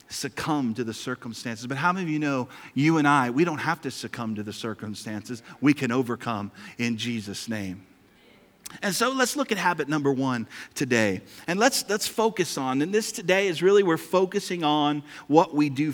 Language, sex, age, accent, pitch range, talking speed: English, male, 40-59, American, 120-180 Hz, 195 wpm